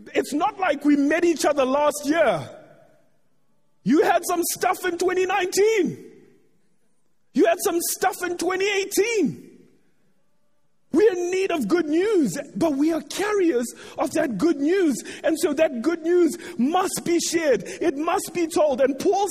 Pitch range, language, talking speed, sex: 260-385 Hz, English, 150 wpm, male